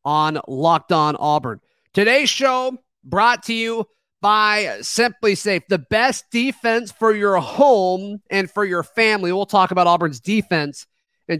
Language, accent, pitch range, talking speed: English, American, 170-210 Hz, 150 wpm